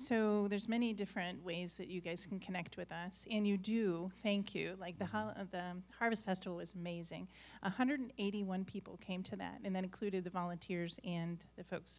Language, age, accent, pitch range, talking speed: English, 40-59, American, 185-220 Hz, 185 wpm